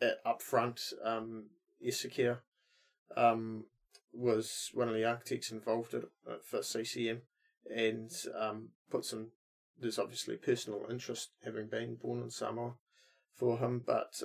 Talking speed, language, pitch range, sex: 120 wpm, English, 105-115 Hz, male